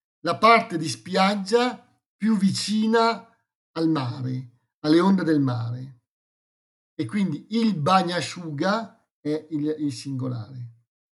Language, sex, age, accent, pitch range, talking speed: Italian, male, 50-69, native, 140-195 Hz, 105 wpm